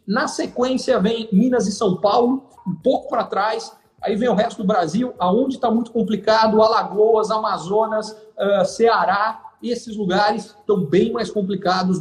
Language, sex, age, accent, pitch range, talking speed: Portuguese, male, 50-69, Brazilian, 195-250 Hz, 150 wpm